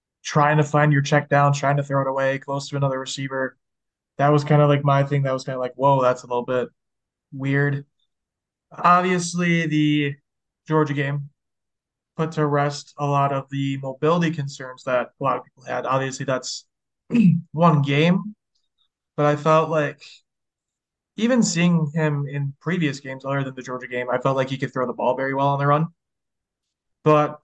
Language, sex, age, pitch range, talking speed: English, male, 20-39, 135-155 Hz, 185 wpm